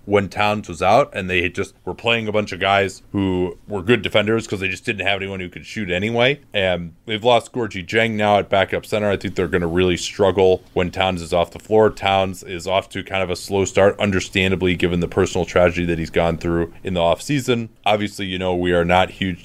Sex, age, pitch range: male, 30-49, 90-110 Hz